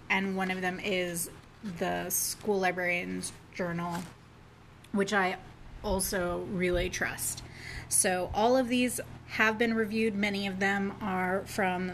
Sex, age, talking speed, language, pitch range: female, 30-49, 130 wpm, English, 180-205 Hz